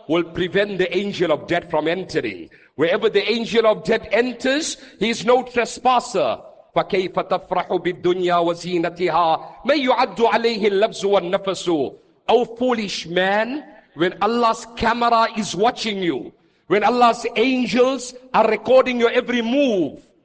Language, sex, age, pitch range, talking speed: English, male, 50-69, 200-255 Hz, 105 wpm